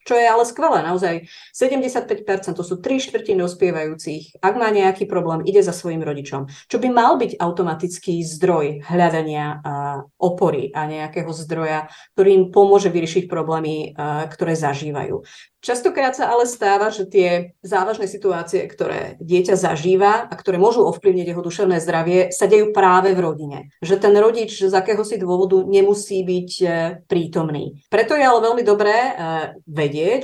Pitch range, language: 170-210 Hz, Slovak